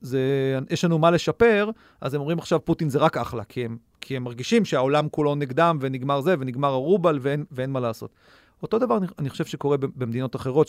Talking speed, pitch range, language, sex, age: 200 wpm, 125-160 Hz, Hebrew, male, 40-59